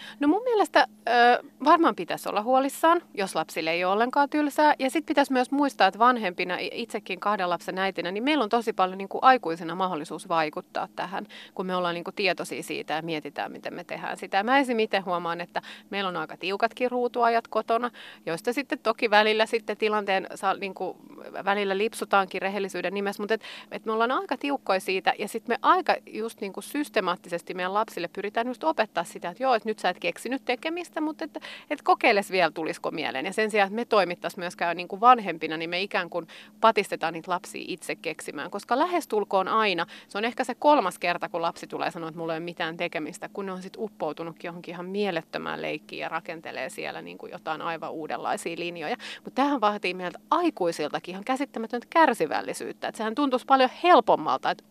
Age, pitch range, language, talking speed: 30-49, 175-245 Hz, Finnish, 190 wpm